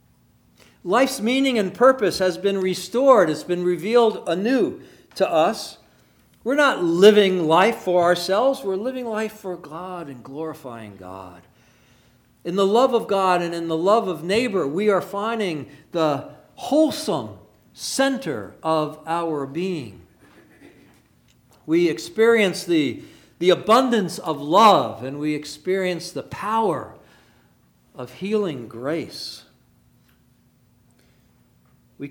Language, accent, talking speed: English, American, 120 wpm